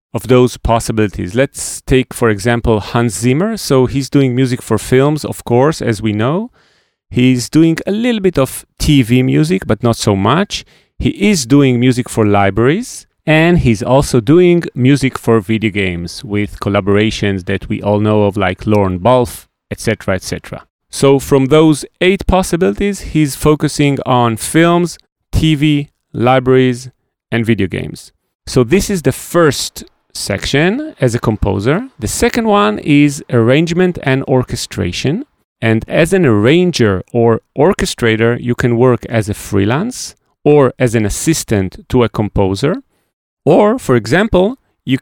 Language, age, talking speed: English, 30-49, 150 wpm